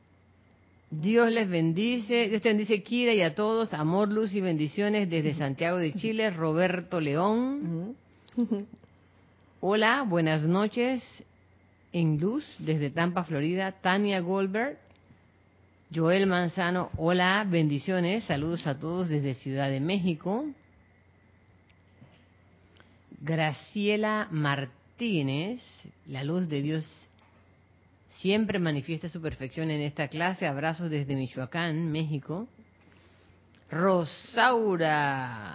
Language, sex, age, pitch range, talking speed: Spanish, female, 40-59, 130-200 Hz, 100 wpm